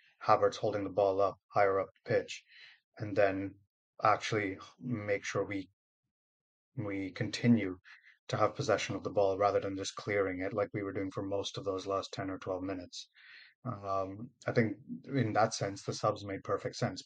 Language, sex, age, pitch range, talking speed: English, male, 30-49, 100-115 Hz, 180 wpm